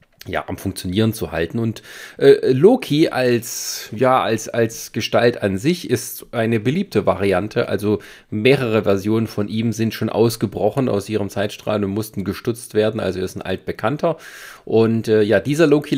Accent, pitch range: German, 100-120 Hz